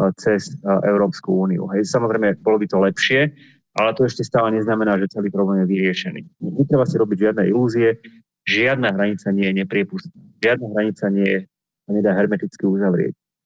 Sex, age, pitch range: male, 30-49, 100-125 Hz